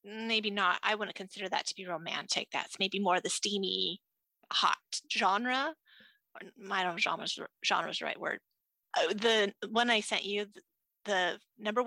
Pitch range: 190-245 Hz